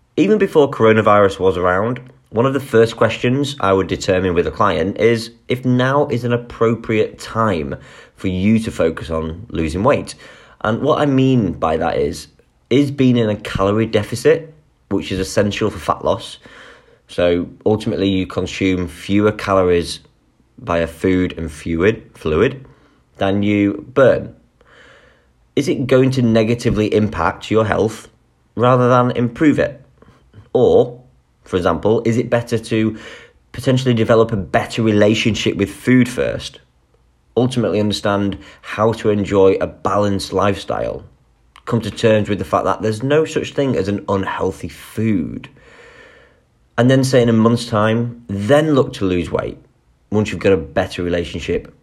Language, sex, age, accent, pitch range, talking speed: English, male, 30-49, British, 95-125 Hz, 155 wpm